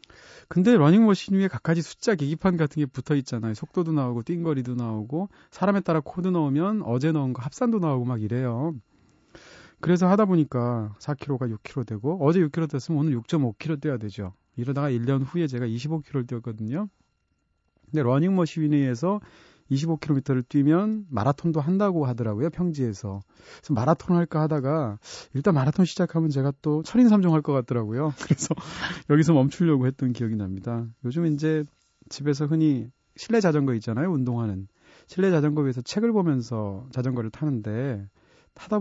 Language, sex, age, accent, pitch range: Korean, male, 30-49, native, 120-165 Hz